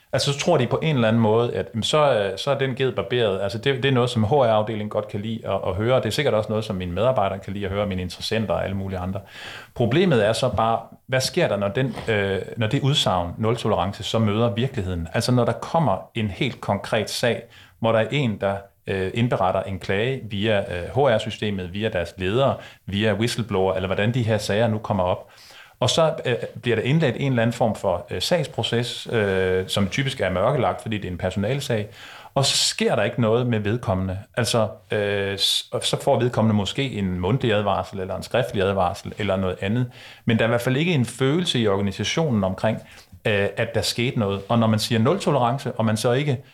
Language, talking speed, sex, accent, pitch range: Danish, 210 wpm, male, native, 100-125 Hz